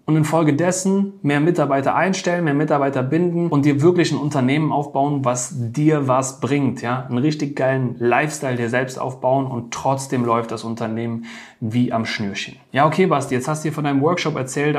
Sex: male